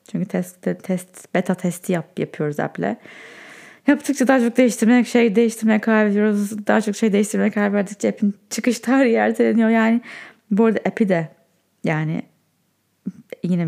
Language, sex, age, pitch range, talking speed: Turkish, female, 20-39, 180-225 Hz, 130 wpm